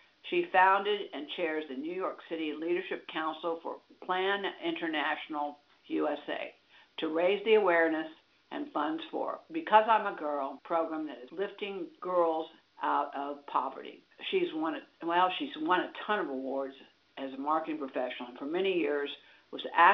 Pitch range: 155-215 Hz